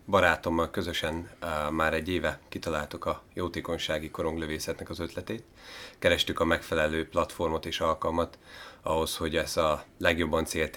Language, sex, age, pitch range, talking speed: Hungarian, male, 30-49, 75-85 Hz, 135 wpm